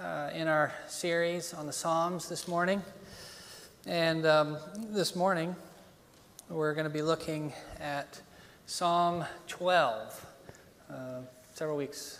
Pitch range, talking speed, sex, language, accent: 140-185 Hz, 120 wpm, male, English, American